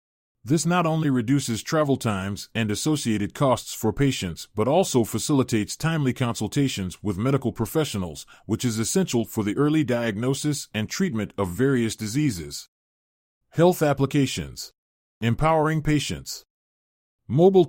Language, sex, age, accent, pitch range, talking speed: English, male, 30-49, American, 105-140 Hz, 120 wpm